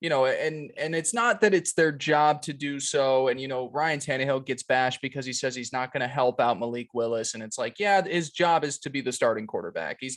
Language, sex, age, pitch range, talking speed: English, male, 20-39, 135-180 Hz, 260 wpm